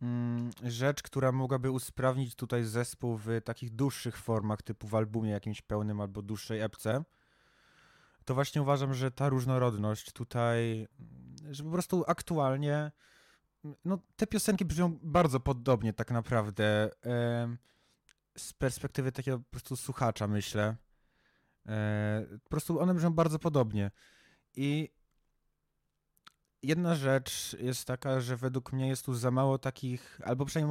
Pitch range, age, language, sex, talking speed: 120-140 Hz, 20-39, Polish, male, 130 wpm